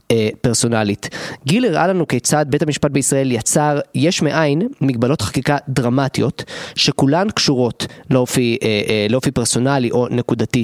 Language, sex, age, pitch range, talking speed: Hebrew, male, 20-39, 115-145 Hz, 120 wpm